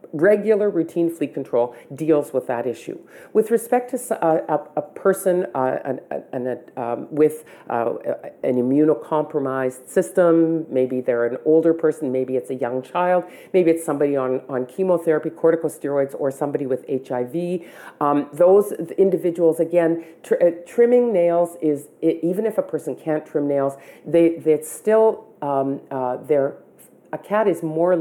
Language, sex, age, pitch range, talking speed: English, female, 50-69, 135-185 Hz, 150 wpm